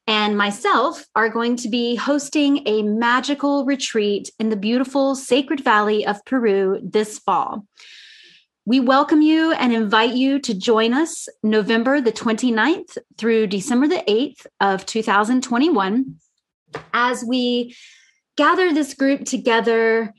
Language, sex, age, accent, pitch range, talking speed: English, female, 30-49, American, 215-270 Hz, 130 wpm